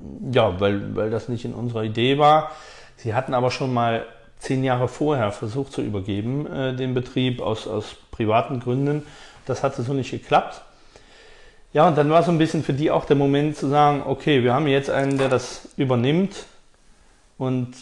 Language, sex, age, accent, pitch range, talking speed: German, male, 30-49, German, 110-135 Hz, 185 wpm